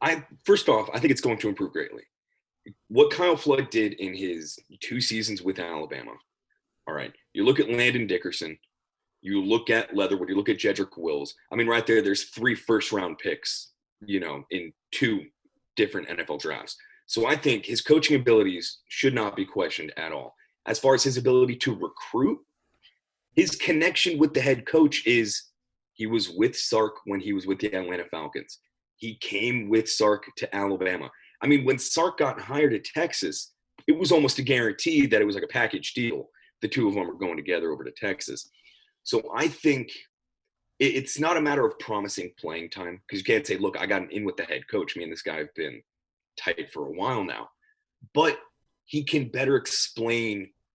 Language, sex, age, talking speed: English, male, 30-49, 195 wpm